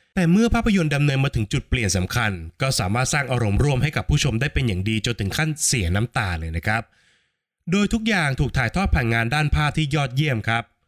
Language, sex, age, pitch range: Thai, male, 20-39, 110-150 Hz